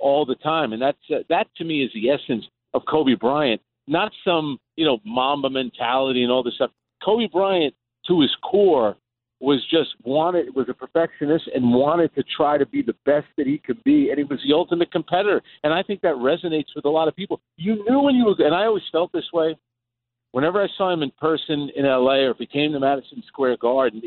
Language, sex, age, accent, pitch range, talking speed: English, male, 50-69, American, 125-165 Hz, 225 wpm